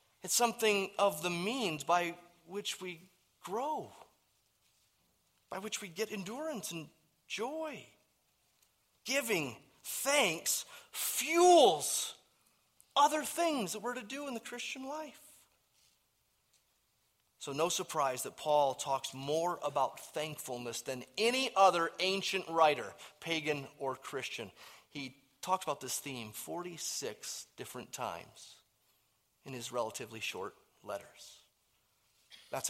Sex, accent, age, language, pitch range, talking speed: male, American, 30-49, English, 130-220 Hz, 110 wpm